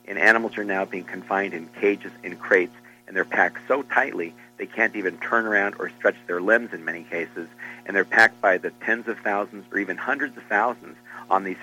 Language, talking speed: English, 215 wpm